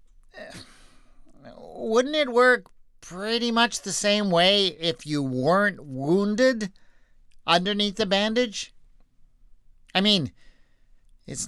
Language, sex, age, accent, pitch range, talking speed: English, male, 50-69, American, 140-210 Hz, 95 wpm